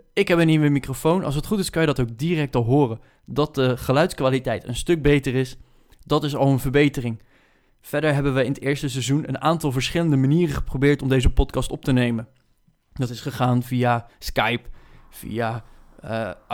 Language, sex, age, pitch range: Dutch, male, 20-39, 125-150 Hz